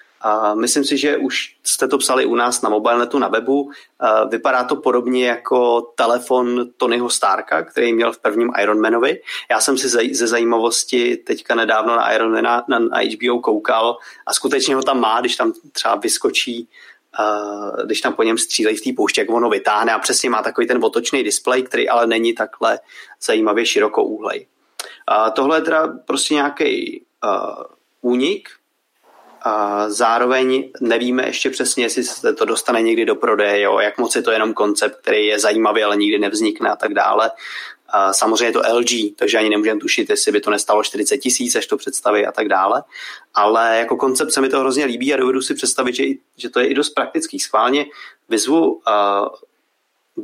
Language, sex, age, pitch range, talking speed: Czech, male, 30-49, 115-155 Hz, 185 wpm